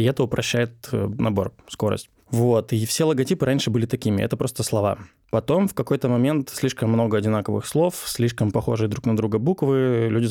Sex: male